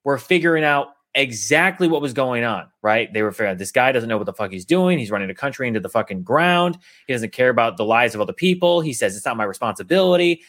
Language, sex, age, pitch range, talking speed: English, male, 30-49, 120-175 Hz, 250 wpm